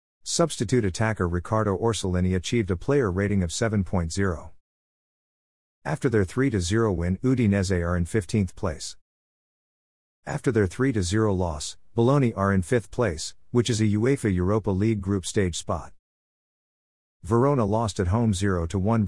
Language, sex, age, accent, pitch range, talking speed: English, male, 50-69, American, 90-115 Hz, 130 wpm